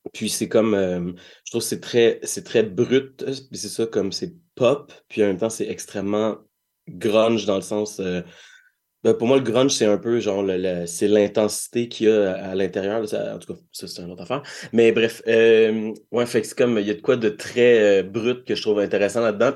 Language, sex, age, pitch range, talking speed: French, male, 30-49, 100-120 Hz, 245 wpm